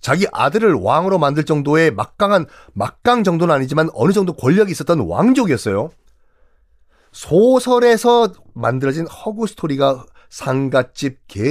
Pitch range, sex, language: 110-185 Hz, male, Korean